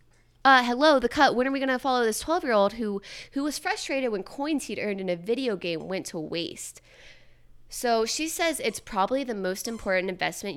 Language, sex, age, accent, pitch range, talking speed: English, female, 20-39, American, 185-265 Hz, 200 wpm